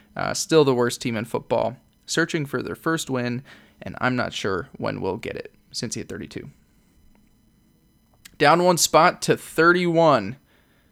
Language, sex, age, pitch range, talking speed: English, male, 10-29, 115-140 Hz, 160 wpm